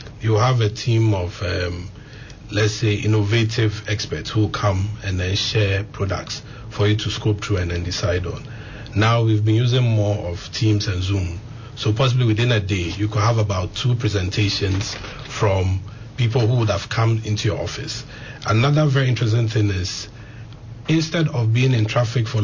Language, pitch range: English, 105-120 Hz